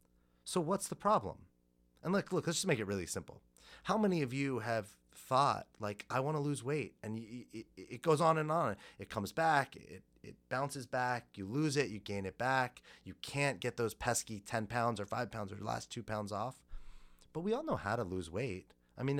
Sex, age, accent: male, 30-49, American